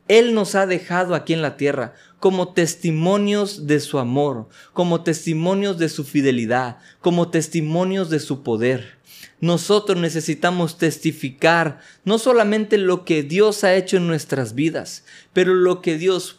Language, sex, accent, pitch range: Spanish, male, Mexican, 140-180 Hz